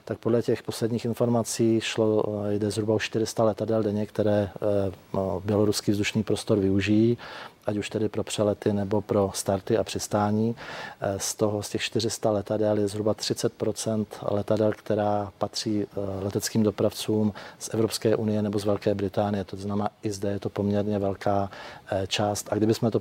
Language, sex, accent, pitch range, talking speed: Czech, male, native, 105-110 Hz, 155 wpm